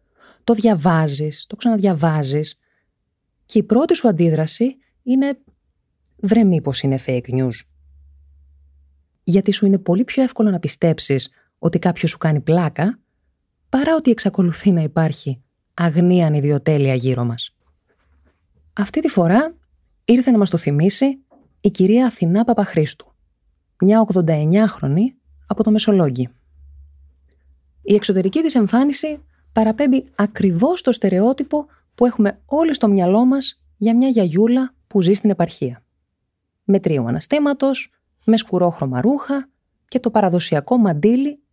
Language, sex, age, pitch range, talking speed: Greek, female, 20-39, 135-230 Hz, 125 wpm